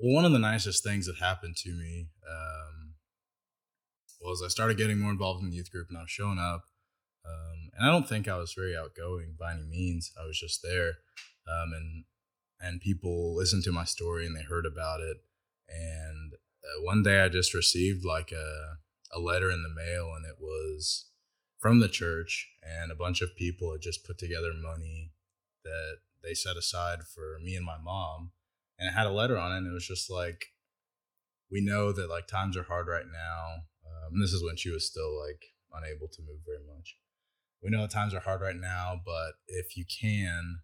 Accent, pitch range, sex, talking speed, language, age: American, 80-95 Hz, male, 205 wpm, English, 20-39